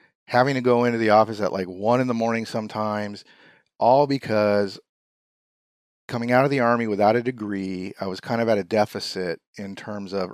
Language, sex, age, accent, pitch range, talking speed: English, male, 40-59, American, 100-120 Hz, 190 wpm